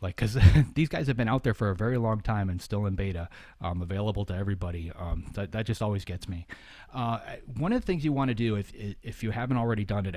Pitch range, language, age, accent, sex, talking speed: 95-110 Hz, English, 30-49, American, male, 260 wpm